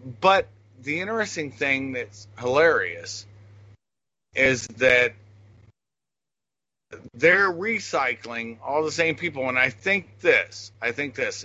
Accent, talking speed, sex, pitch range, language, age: American, 110 wpm, male, 105-145 Hz, English, 50-69